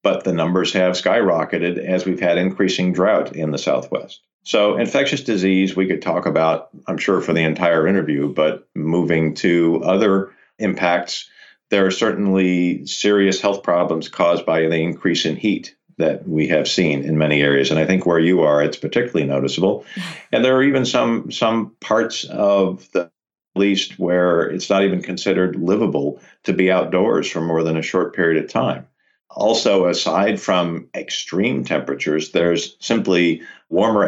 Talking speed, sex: 165 wpm, male